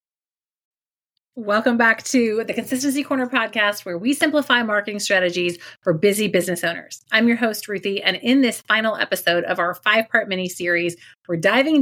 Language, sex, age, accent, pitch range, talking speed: English, female, 30-49, American, 175-220 Hz, 155 wpm